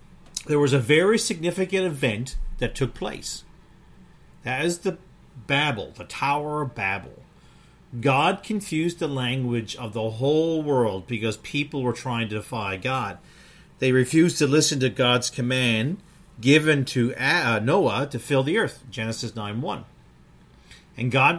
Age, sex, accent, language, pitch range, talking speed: 50-69, male, American, English, 125-160 Hz, 140 wpm